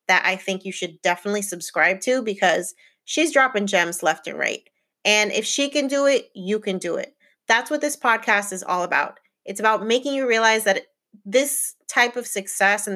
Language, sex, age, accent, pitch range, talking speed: English, female, 30-49, American, 190-230 Hz, 200 wpm